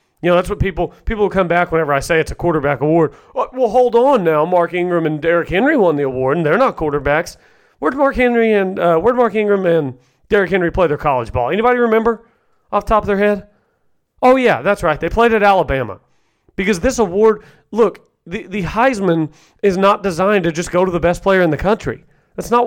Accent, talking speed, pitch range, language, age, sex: American, 220 wpm, 155-205 Hz, English, 40-59, male